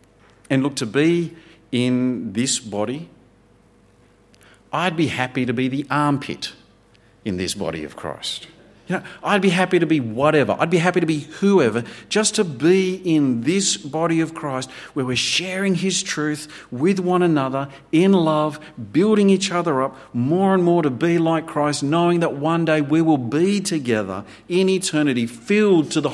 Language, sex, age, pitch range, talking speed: English, male, 50-69, 100-155 Hz, 170 wpm